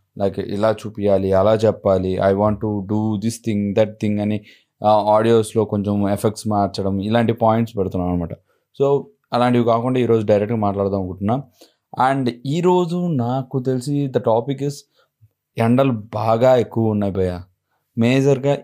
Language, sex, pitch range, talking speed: Telugu, male, 105-125 Hz, 135 wpm